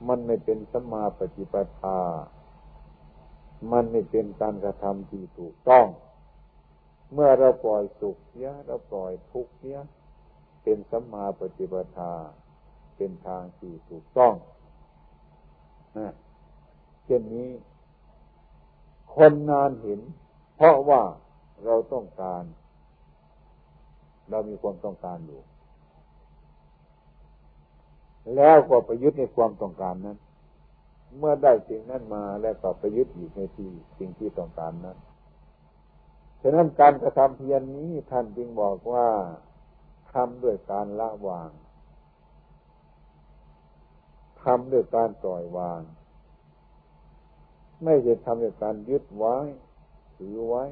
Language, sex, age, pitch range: Thai, male, 60-79, 75-115 Hz